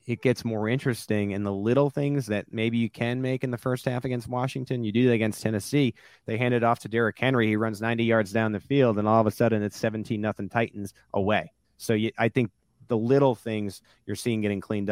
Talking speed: 235 wpm